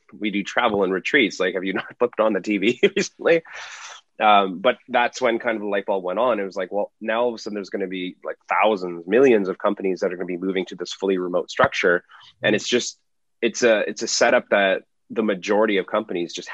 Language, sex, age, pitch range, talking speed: English, male, 30-49, 95-110 Hz, 245 wpm